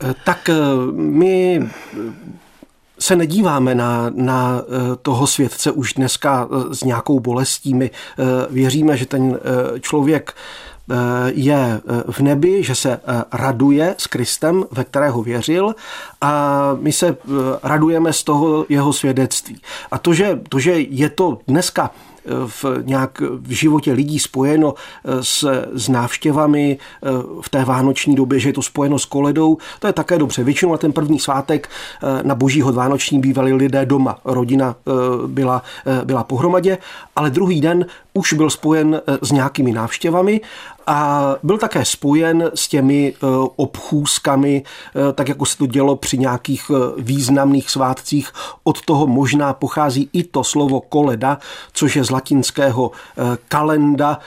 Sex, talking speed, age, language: male, 130 wpm, 40-59, Czech